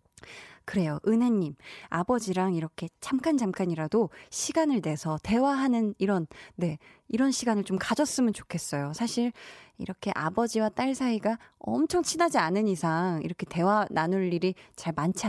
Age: 20-39